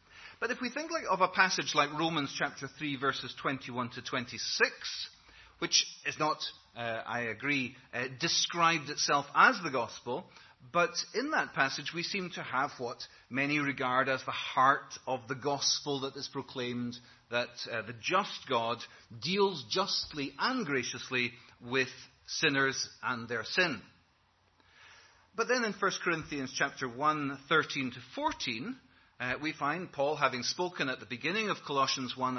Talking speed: 155 wpm